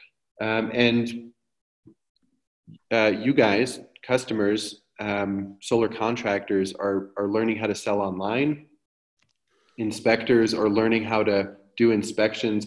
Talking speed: 110 wpm